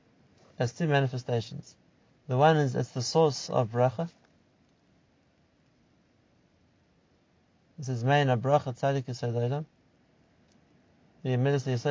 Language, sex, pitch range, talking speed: English, male, 125-150 Hz, 80 wpm